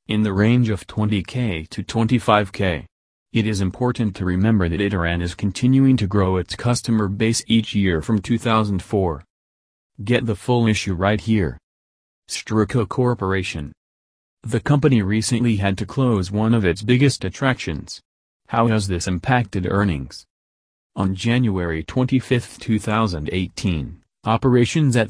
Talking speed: 130 wpm